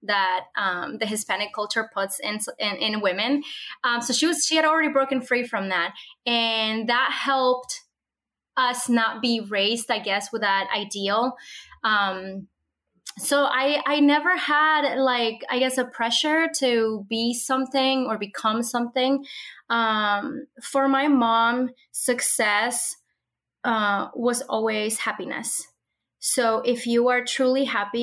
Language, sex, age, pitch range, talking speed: English, female, 20-39, 210-265 Hz, 140 wpm